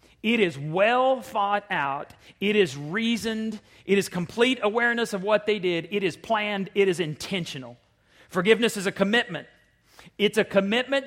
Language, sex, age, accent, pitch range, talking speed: English, male, 40-59, American, 180-220 Hz, 155 wpm